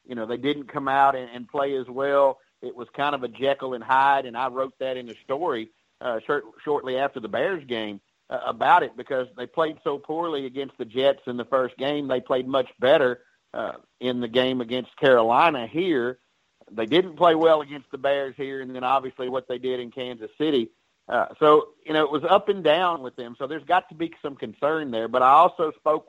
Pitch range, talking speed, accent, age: 130-150 Hz, 225 wpm, American, 50-69